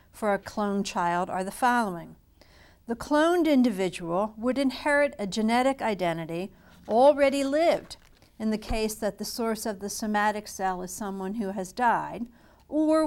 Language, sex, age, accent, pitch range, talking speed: English, female, 60-79, American, 195-255 Hz, 150 wpm